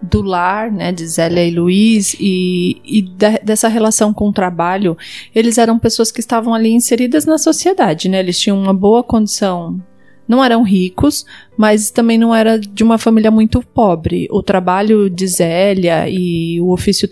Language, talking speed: Portuguese, 170 wpm